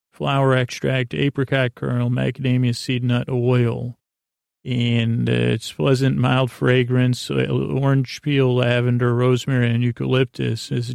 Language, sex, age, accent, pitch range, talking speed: English, male, 40-59, American, 120-130 Hz, 105 wpm